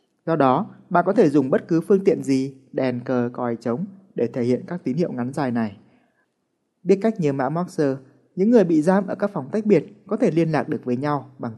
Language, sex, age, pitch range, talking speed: Vietnamese, male, 20-39, 130-185 Hz, 240 wpm